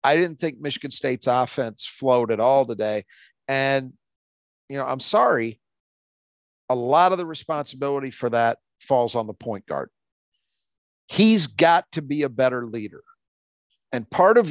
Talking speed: 155 wpm